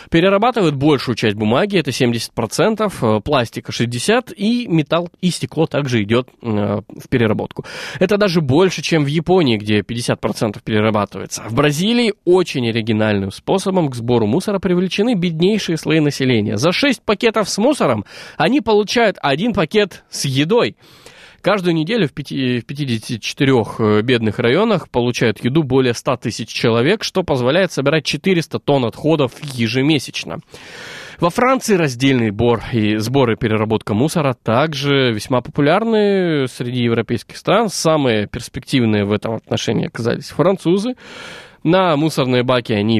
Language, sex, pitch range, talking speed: Russian, male, 115-175 Hz, 130 wpm